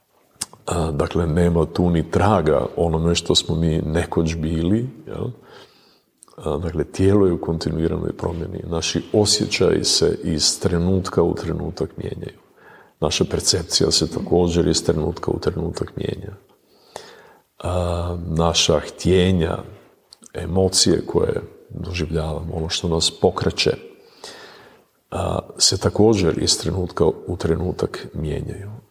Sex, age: male, 40-59